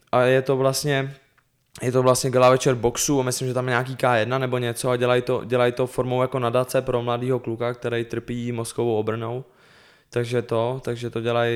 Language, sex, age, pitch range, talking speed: Czech, male, 20-39, 120-125 Hz, 200 wpm